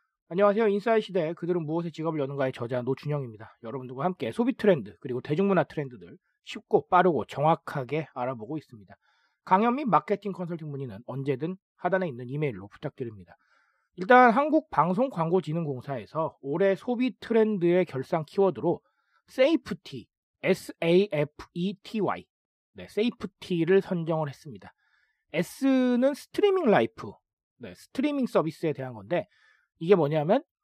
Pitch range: 140-215 Hz